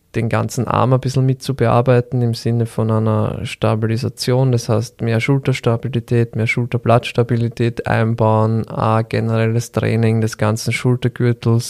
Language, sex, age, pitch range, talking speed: German, male, 20-39, 110-120 Hz, 125 wpm